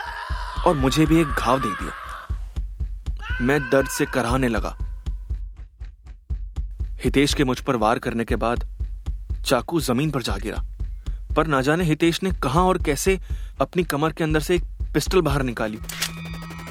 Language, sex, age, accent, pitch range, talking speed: Hindi, male, 30-49, native, 110-150 Hz, 70 wpm